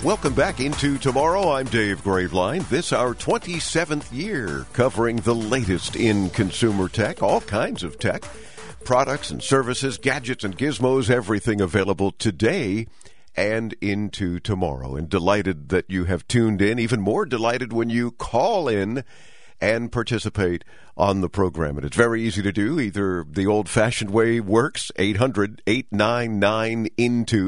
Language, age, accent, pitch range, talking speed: English, 50-69, American, 95-120 Hz, 140 wpm